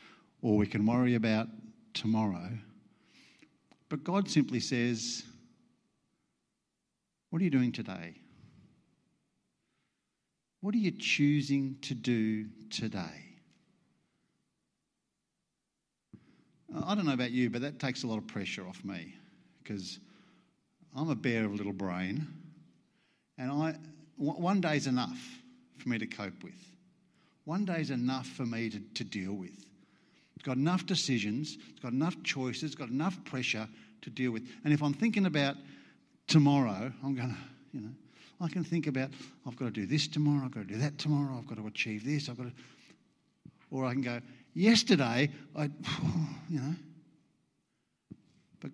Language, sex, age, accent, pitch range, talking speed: English, male, 50-69, Australian, 120-160 Hz, 155 wpm